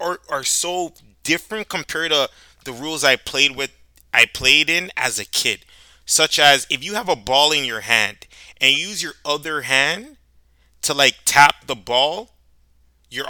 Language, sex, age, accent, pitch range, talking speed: English, male, 20-39, American, 120-160 Hz, 170 wpm